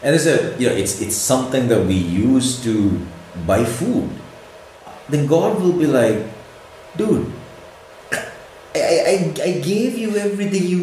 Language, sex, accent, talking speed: Romanian, male, Indian, 150 wpm